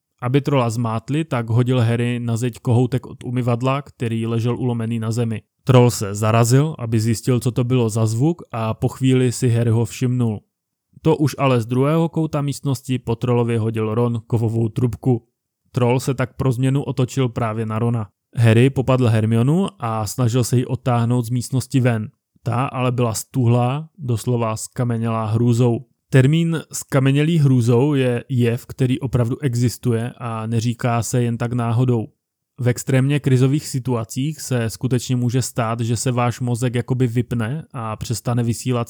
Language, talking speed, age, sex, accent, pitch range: Czech, 160 wpm, 20-39, male, native, 115-130 Hz